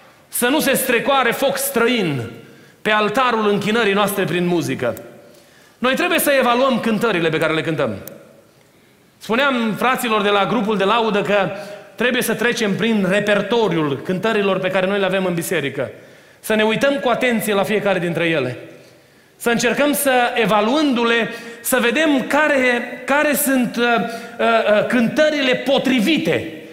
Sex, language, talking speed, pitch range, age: male, Romanian, 140 wpm, 215-260 Hz, 30-49